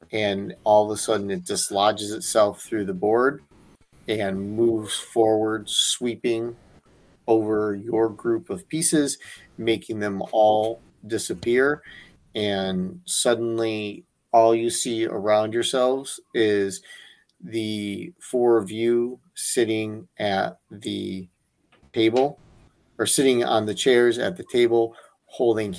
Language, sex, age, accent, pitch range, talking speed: English, male, 40-59, American, 100-115 Hz, 115 wpm